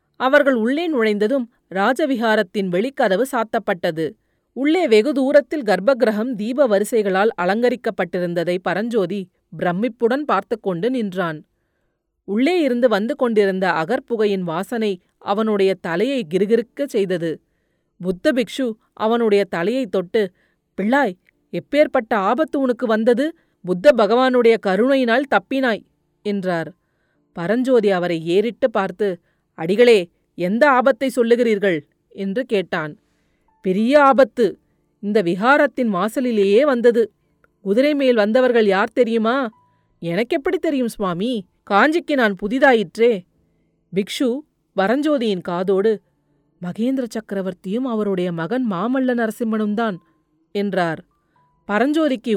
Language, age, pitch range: Tamil, 30-49, 185-250 Hz